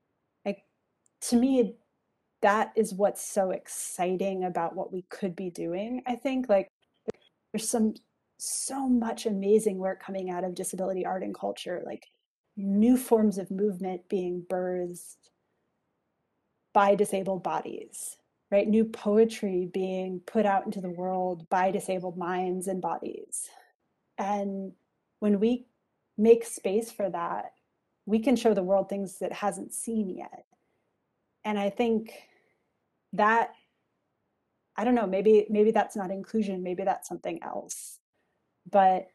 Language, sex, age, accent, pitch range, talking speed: English, female, 30-49, American, 185-220 Hz, 135 wpm